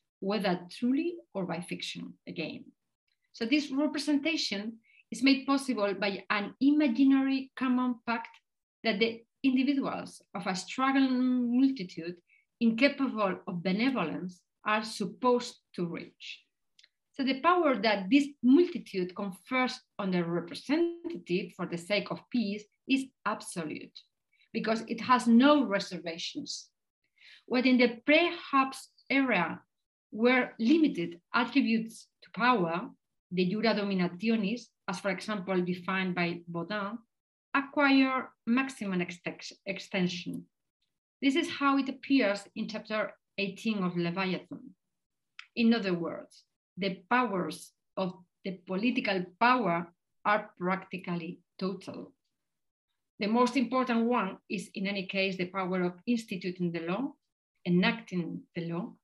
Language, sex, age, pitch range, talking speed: English, female, 40-59, 190-260 Hz, 115 wpm